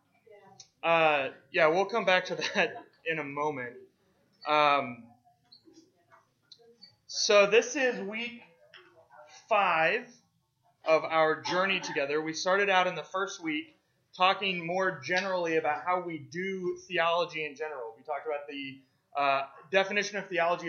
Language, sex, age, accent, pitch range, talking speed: English, male, 20-39, American, 140-185 Hz, 130 wpm